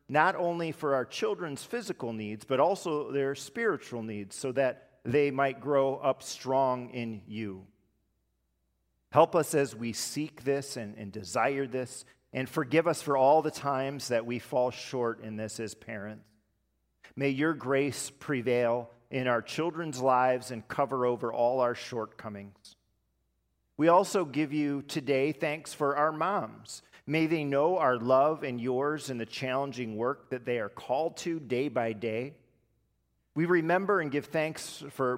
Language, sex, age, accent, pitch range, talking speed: English, male, 40-59, American, 115-150 Hz, 160 wpm